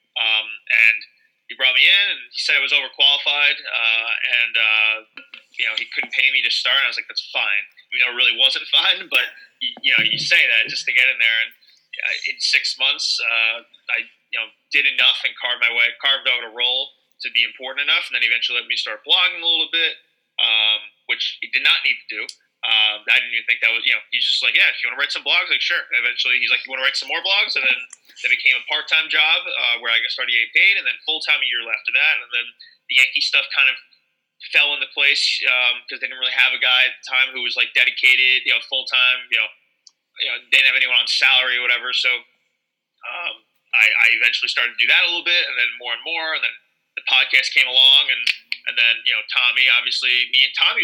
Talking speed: 255 wpm